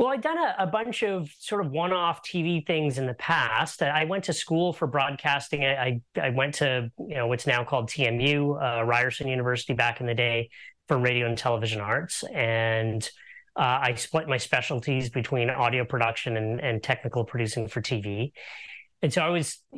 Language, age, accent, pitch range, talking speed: English, 30-49, American, 115-145 Hz, 195 wpm